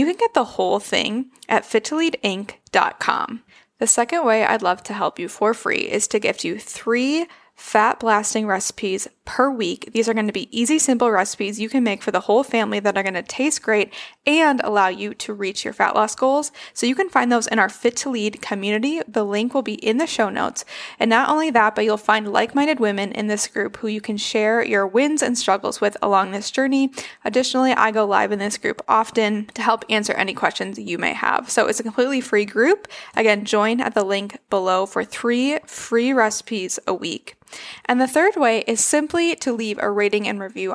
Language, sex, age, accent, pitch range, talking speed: English, female, 10-29, American, 205-260 Hz, 215 wpm